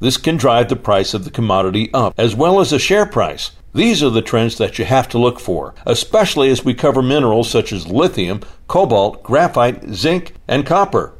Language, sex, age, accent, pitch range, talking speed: English, male, 60-79, American, 115-150 Hz, 205 wpm